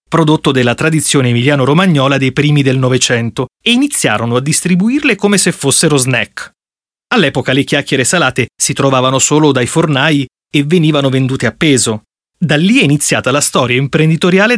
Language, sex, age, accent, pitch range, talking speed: Italian, male, 30-49, native, 125-165 Hz, 150 wpm